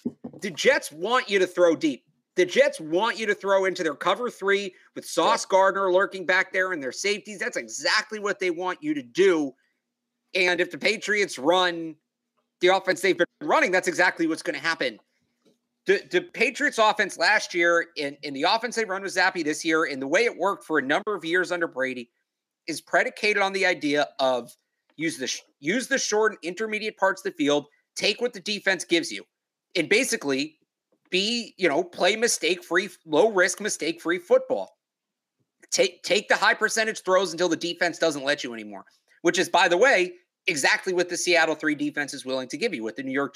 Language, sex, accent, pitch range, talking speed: English, male, American, 165-215 Hz, 200 wpm